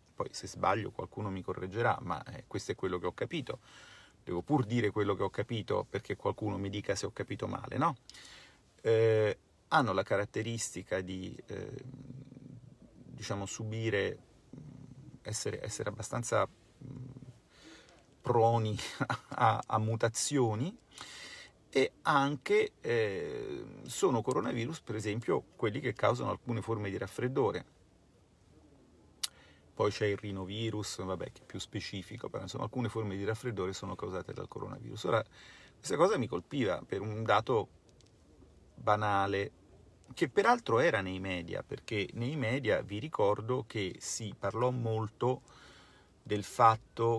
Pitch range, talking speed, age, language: 95-120 Hz, 125 wpm, 40-59, Italian